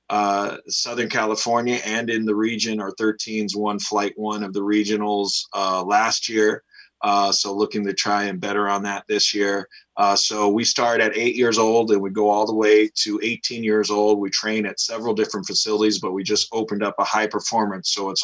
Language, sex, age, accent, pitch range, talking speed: English, male, 20-39, American, 100-115 Hz, 205 wpm